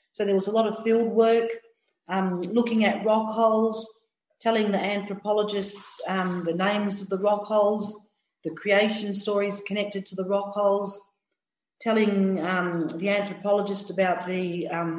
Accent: Australian